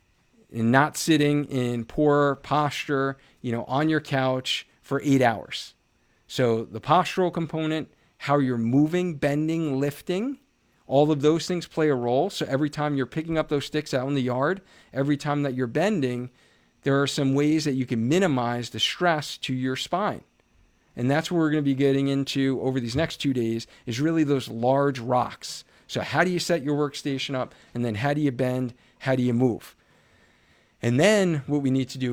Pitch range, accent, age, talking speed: 125-155 Hz, American, 40-59, 195 wpm